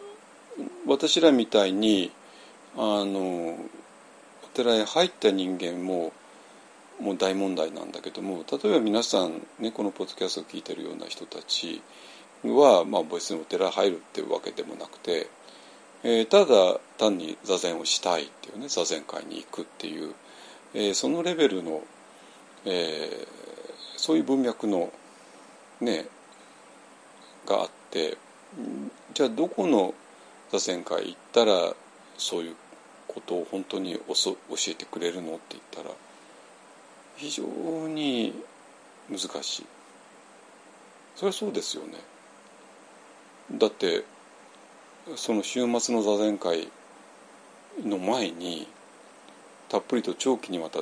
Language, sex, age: Japanese, male, 50-69